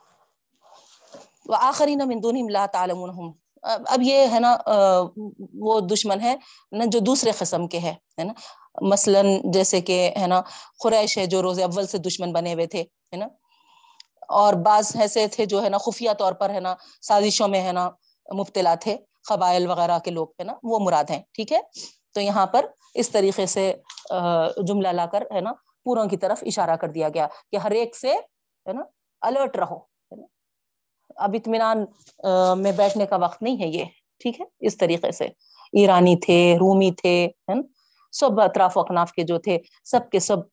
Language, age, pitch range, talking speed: Urdu, 30-49, 180-225 Hz, 170 wpm